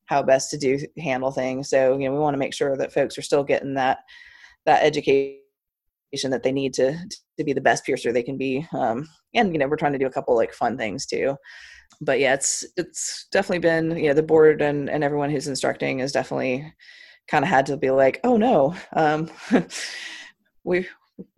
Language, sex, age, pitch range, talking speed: English, female, 20-39, 135-165 Hz, 215 wpm